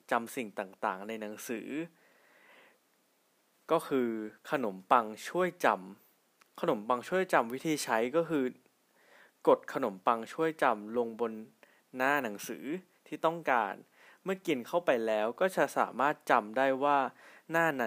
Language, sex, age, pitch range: Thai, male, 20-39, 115-155 Hz